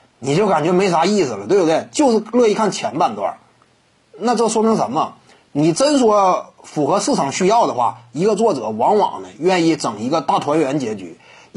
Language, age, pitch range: Chinese, 30-49, 165-230 Hz